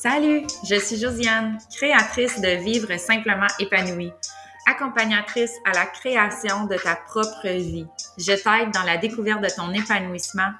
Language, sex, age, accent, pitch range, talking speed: French, female, 20-39, Canadian, 170-210 Hz, 155 wpm